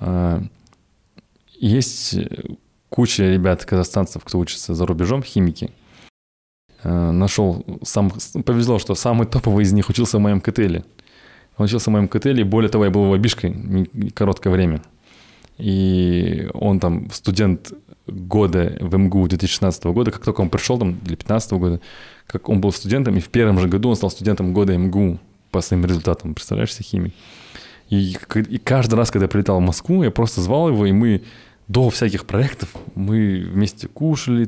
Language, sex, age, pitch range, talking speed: Russian, male, 20-39, 90-115 Hz, 155 wpm